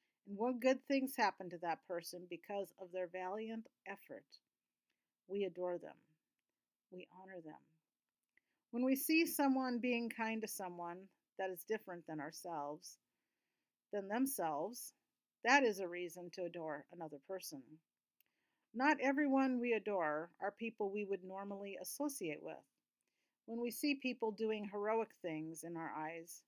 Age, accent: 50-69, American